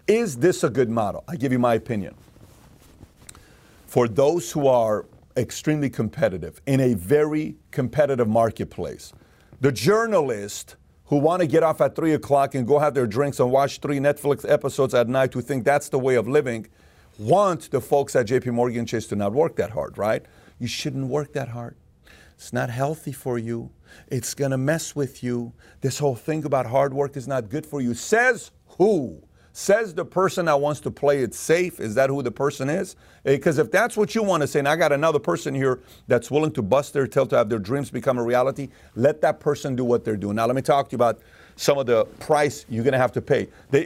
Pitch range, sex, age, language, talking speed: 120-155 Hz, male, 50-69, English, 215 wpm